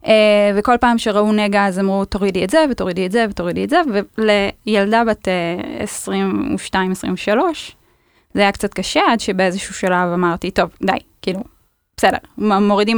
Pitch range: 190-245 Hz